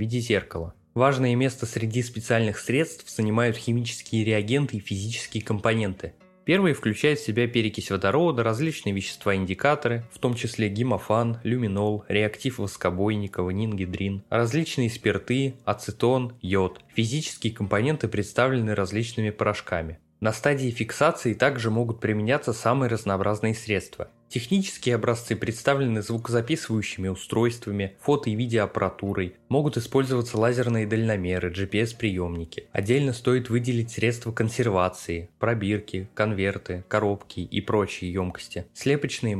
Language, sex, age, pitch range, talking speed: Russian, male, 20-39, 100-120 Hz, 110 wpm